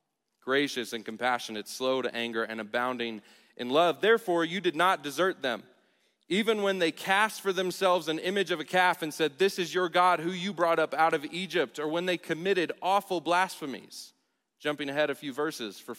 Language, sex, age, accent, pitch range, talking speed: English, male, 30-49, American, 125-180 Hz, 195 wpm